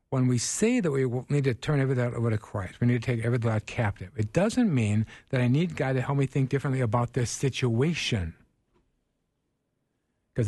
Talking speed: 200 wpm